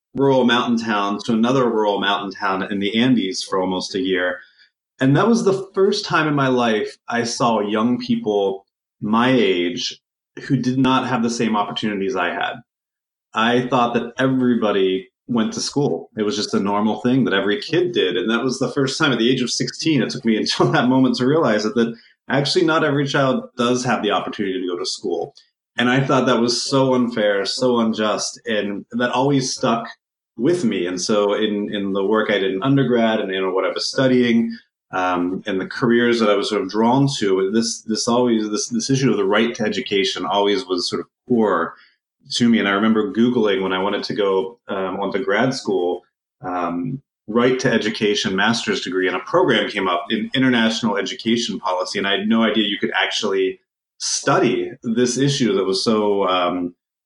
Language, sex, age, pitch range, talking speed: English, male, 30-49, 100-130 Hz, 205 wpm